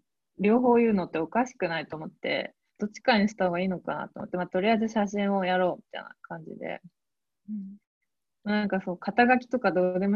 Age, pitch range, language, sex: 20-39, 180-220 Hz, Japanese, female